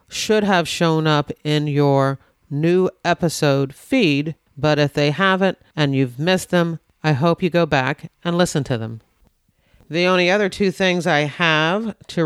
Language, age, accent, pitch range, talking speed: English, 40-59, American, 145-175 Hz, 165 wpm